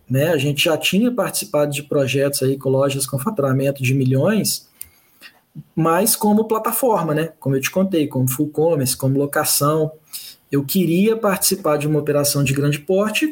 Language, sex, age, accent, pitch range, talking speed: Portuguese, male, 20-39, Brazilian, 140-190 Hz, 165 wpm